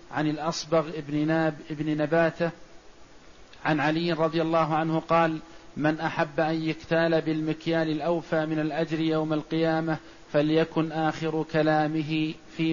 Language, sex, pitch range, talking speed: Arabic, male, 155-160 Hz, 125 wpm